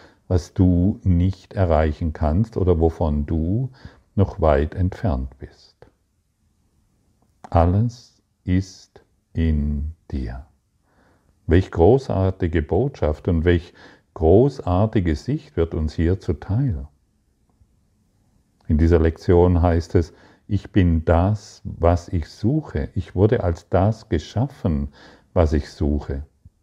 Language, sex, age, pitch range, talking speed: German, male, 50-69, 85-110 Hz, 105 wpm